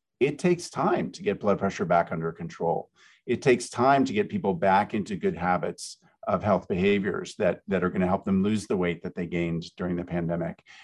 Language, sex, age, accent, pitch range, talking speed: English, male, 50-69, American, 90-120 Hz, 210 wpm